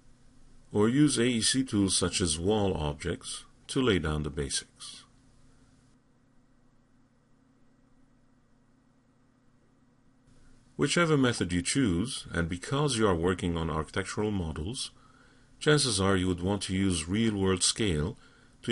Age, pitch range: 50-69, 90-125 Hz